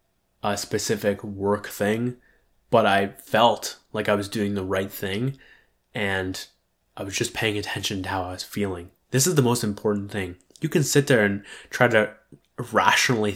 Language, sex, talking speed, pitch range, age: English, male, 175 wpm, 100-115 Hz, 20-39